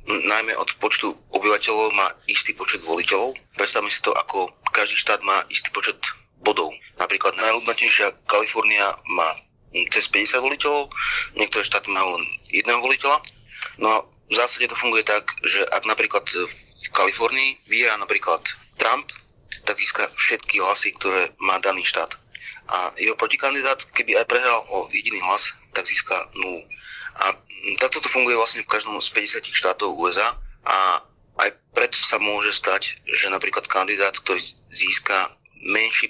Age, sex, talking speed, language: 30-49, male, 150 wpm, Slovak